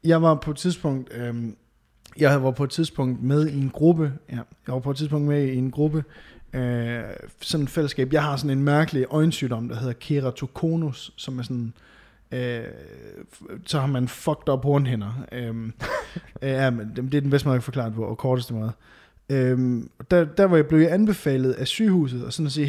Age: 20-39